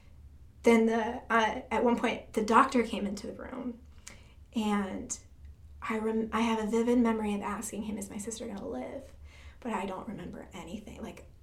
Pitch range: 195-235 Hz